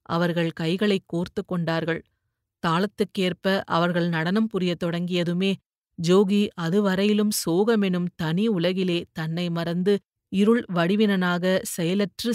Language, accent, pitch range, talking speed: Tamil, native, 170-200 Hz, 90 wpm